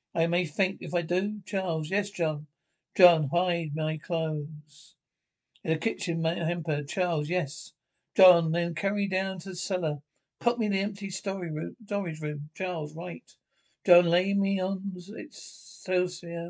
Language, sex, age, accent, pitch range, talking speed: English, male, 60-79, British, 155-185 Hz, 160 wpm